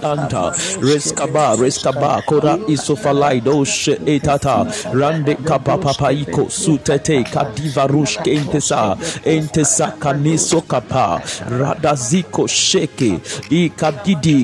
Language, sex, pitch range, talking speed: English, male, 145-170 Hz, 95 wpm